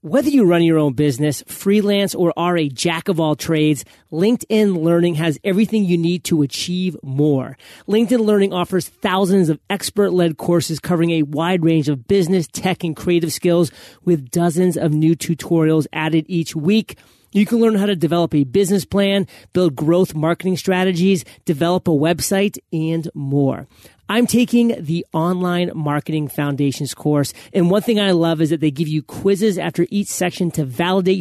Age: 30-49